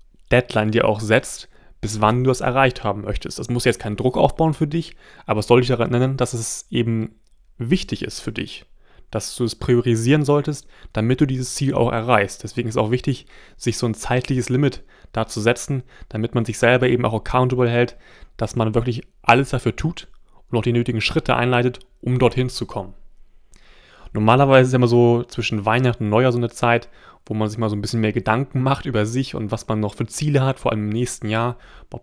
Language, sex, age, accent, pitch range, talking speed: German, male, 30-49, German, 110-130 Hz, 215 wpm